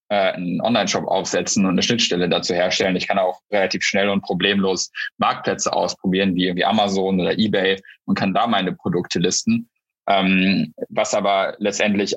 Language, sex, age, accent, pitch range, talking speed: German, male, 10-29, German, 95-105 Hz, 155 wpm